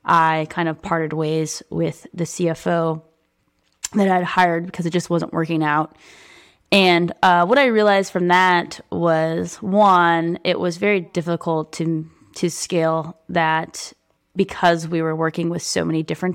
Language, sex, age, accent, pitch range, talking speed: English, female, 20-39, American, 155-175 Hz, 155 wpm